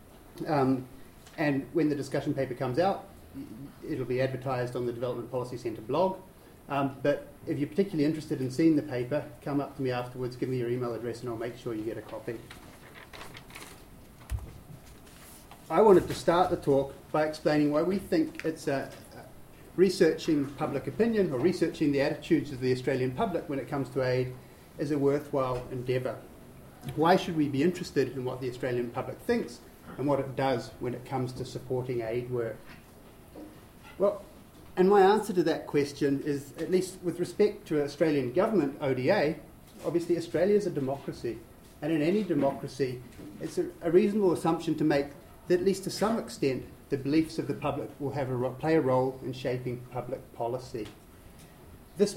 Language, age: English, 30-49